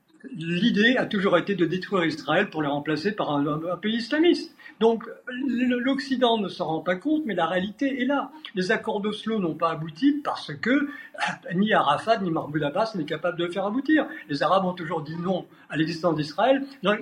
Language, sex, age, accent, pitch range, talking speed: French, male, 50-69, French, 170-240 Hz, 200 wpm